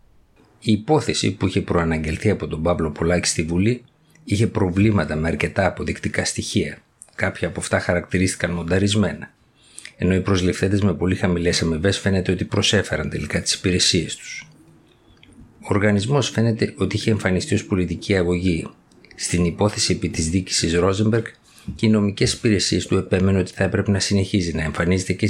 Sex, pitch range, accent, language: male, 85-105 Hz, native, Greek